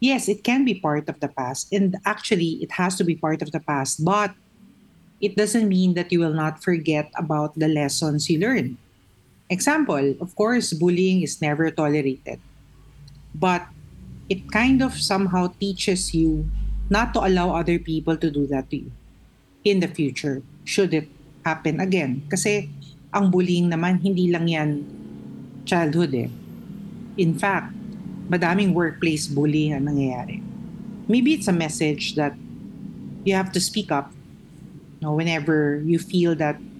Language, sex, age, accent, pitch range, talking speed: Filipino, female, 50-69, native, 150-200 Hz, 160 wpm